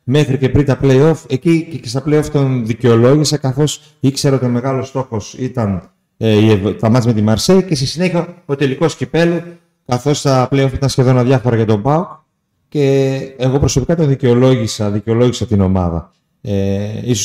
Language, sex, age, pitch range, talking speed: Greek, male, 30-49, 110-150 Hz, 165 wpm